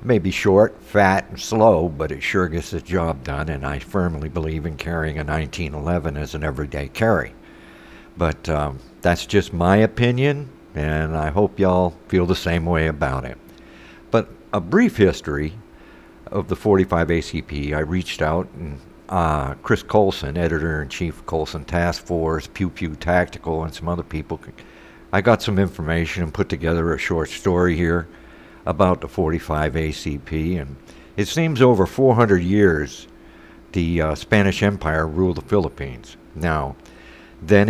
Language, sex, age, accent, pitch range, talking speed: English, male, 60-79, American, 75-95 Hz, 155 wpm